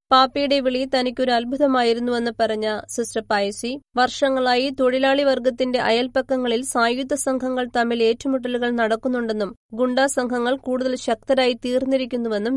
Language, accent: Malayalam, native